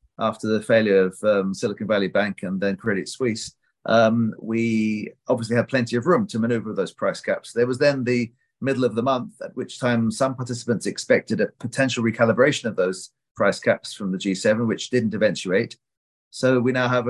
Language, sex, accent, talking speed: English, male, British, 195 wpm